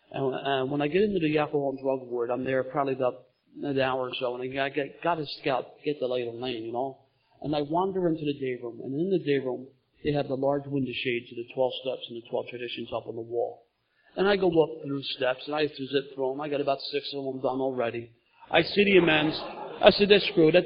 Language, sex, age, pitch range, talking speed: English, male, 40-59, 125-150 Hz, 260 wpm